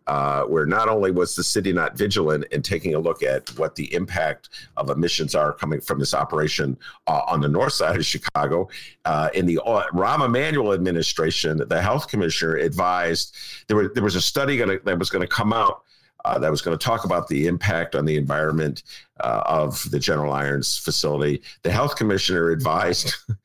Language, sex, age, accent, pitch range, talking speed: English, male, 50-69, American, 90-130 Hz, 190 wpm